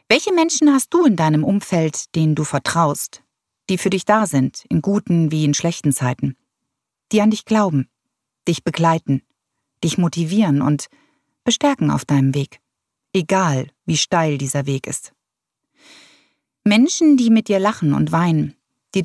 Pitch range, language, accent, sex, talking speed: 150-210 Hz, German, German, female, 150 wpm